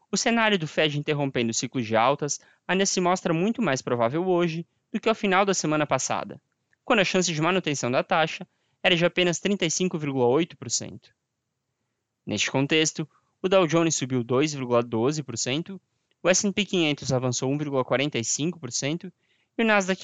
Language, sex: Portuguese, male